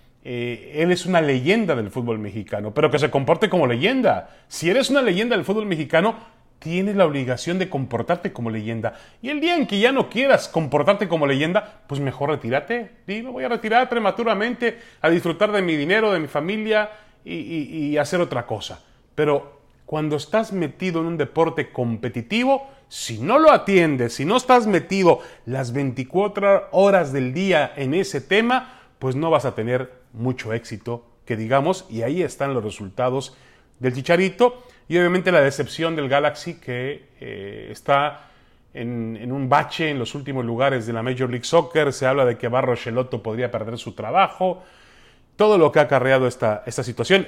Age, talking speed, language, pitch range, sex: 30-49, 180 wpm, Spanish, 125-180 Hz, male